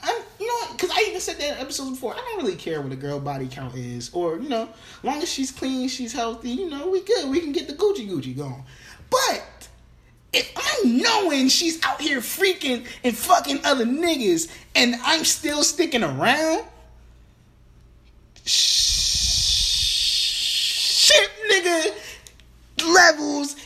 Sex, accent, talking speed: male, American, 160 wpm